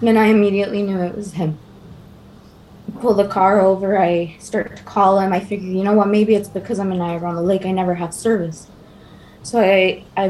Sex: female